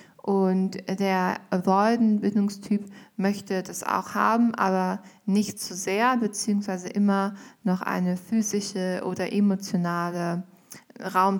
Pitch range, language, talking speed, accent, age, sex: 185-215 Hz, German, 105 wpm, German, 20-39, female